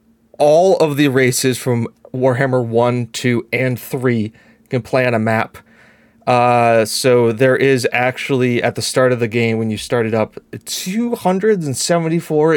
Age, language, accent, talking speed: 30-49, English, American, 150 wpm